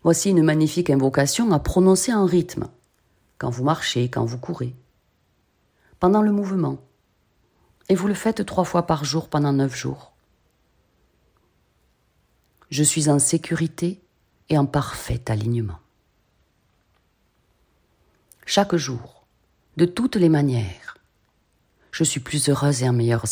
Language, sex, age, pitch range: French, female, 40-59, 115-170 Hz